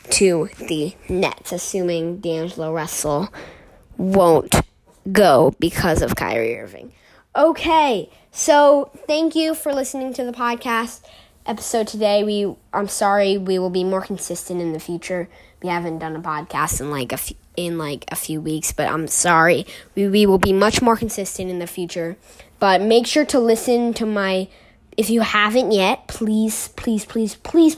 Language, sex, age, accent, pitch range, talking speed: English, female, 10-29, American, 175-225 Hz, 165 wpm